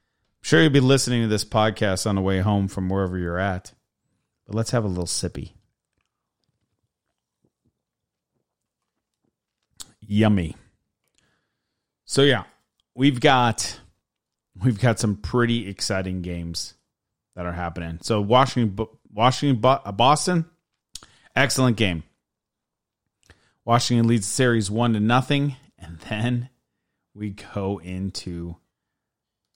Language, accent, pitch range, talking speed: English, American, 95-125 Hz, 110 wpm